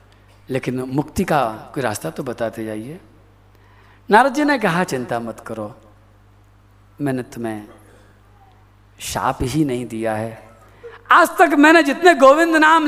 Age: 50-69